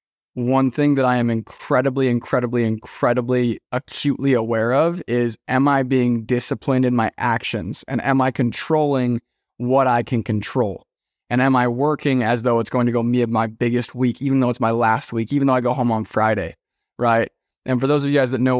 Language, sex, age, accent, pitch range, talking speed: English, male, 20-39, American, 120-135 Hz, 205 wpm